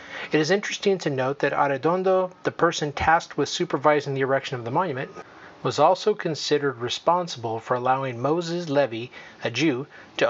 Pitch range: 135-160 Hz